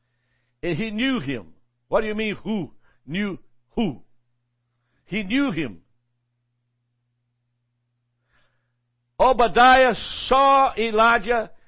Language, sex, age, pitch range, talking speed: English, male, 60-79, 120-195 Hz, 85 wpm